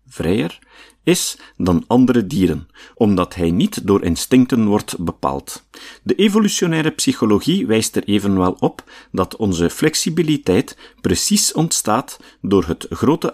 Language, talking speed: Dutch, 120 wpm